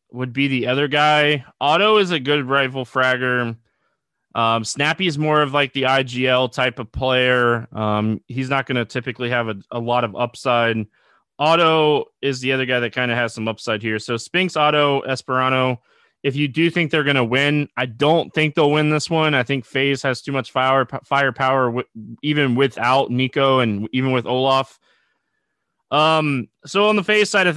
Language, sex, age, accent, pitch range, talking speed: English, male, 20-39, American, 120-145 Hz, 195 wpm